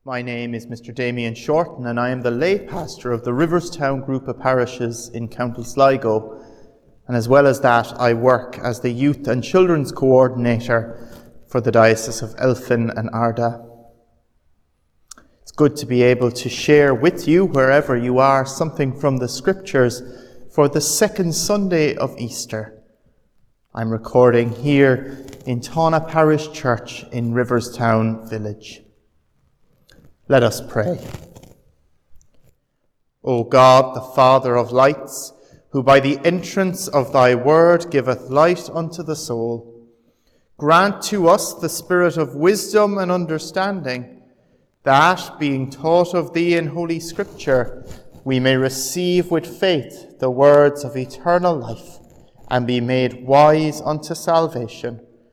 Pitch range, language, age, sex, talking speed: 115-155 Hz, English, 30-49, male, 140 wpm